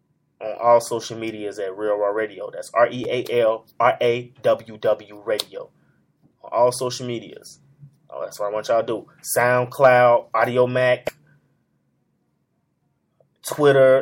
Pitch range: 115-135 Hz